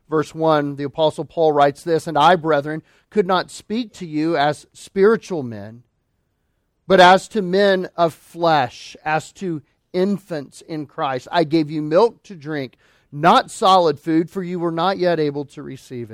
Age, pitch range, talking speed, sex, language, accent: 40-59, 145-195 Hz, 170 wpm, male, English, American